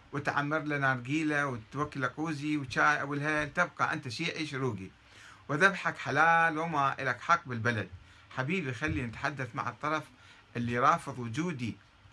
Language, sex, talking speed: Arabic, male, 125 wpm